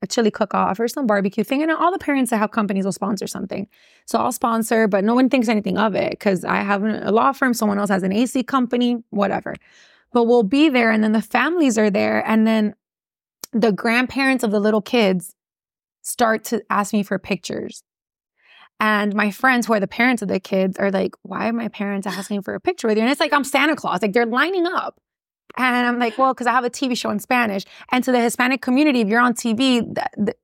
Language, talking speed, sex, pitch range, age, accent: English, 235 wpm, female, 200-245 Hz, 20-39, American